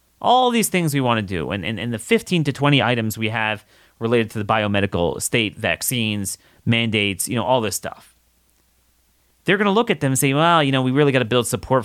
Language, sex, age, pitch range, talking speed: English, male, 30-49, 105-155 Hz, 235 wpm